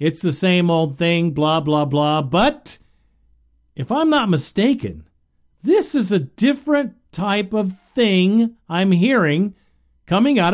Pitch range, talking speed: 155-215 Hz, 135 wpm